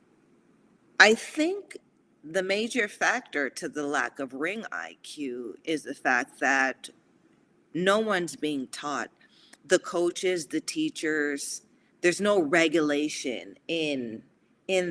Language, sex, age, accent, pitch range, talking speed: English, female, 40-59, American, 150-230 Hz, 115 wpm